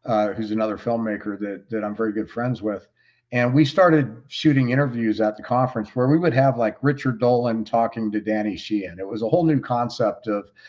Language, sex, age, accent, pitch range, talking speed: English, male, 50-69, American, 105-120 Hz, 210 wpm